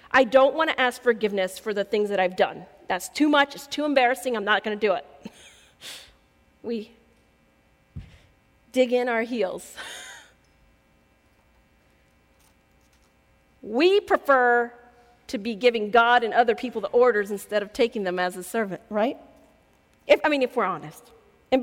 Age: 40-59